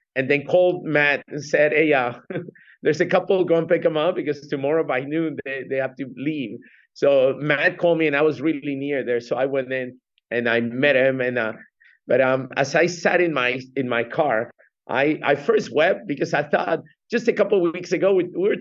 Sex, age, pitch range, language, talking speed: male, 50-69, 140-185 Hz, English, 230 wpm